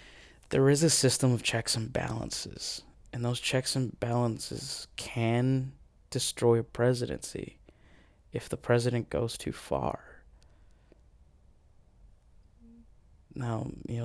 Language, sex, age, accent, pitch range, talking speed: English, male, 20-39, American, 85-130 Hz, 105 wpm